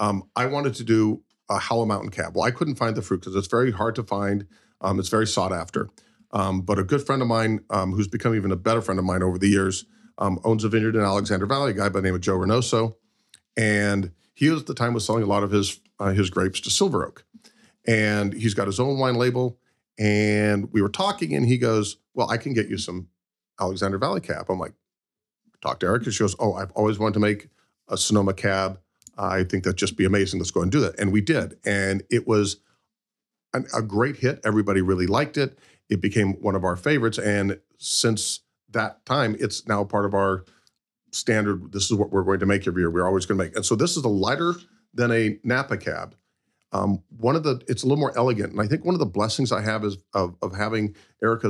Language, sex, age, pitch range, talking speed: English, male, 40-59, 100-120 Hz, 240 wpm